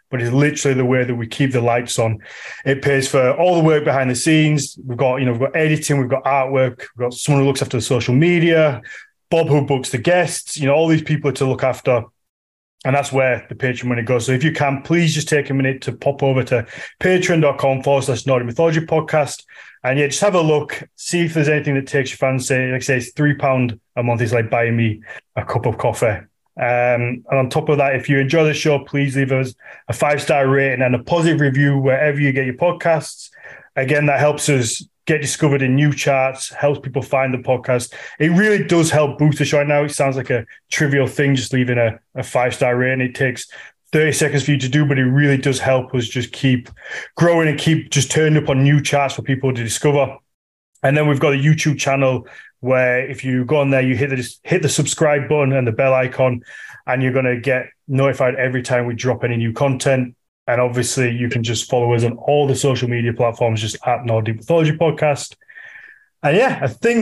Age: 20-39